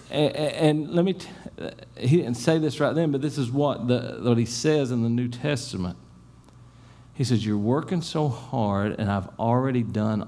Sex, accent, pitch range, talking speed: male, American, 115-150 Hz, 185 wpm